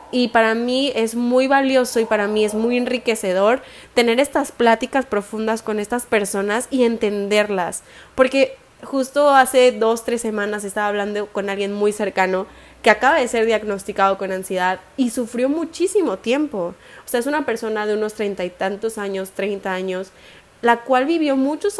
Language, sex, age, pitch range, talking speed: Spanish, female, 20-39, 205-260 Hz, 170 wpm